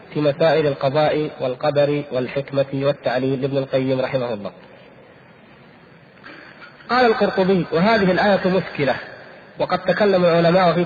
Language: Arabic